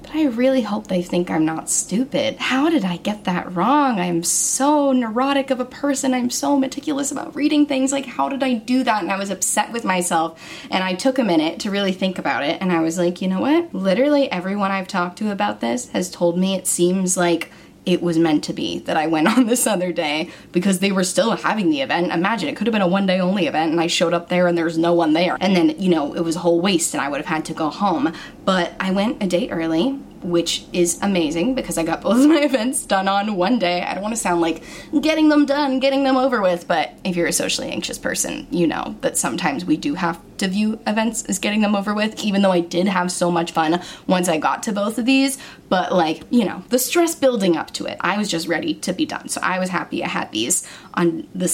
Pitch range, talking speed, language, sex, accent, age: 175-270 Hz, 255 wpm, English, female, American, 10-29